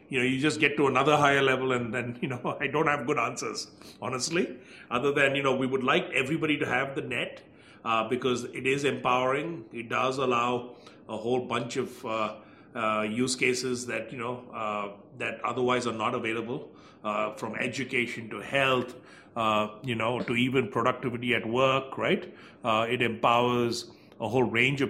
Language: English